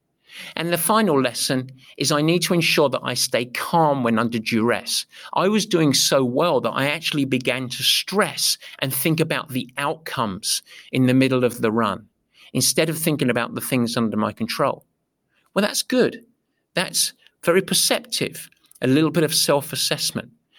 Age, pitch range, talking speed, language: 50-69, 125-165 Hz, 170 wpm, English